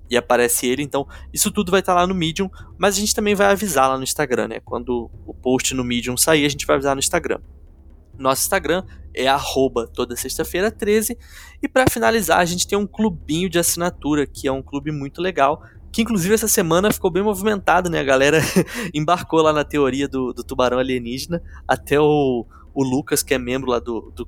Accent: Brazilian